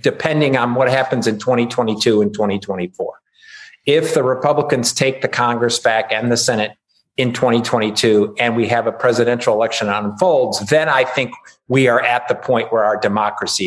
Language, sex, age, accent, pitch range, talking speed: English, male, 50-69, American, 120-155 Hz, 165 wpm